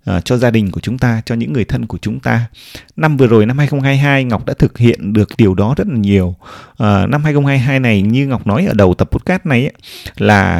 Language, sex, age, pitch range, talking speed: Vietnamese, male, 20-39, 105-140 Hz, 245 wpm